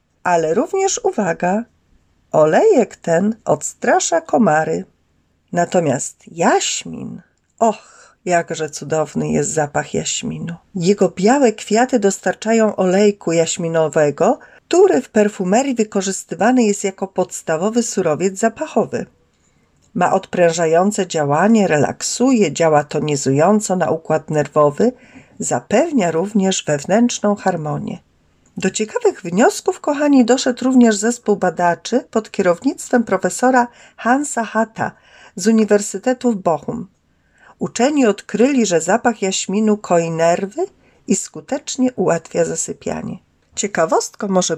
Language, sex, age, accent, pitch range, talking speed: Polish, female, 40-59, native, 165-240 Hz, 100 wpm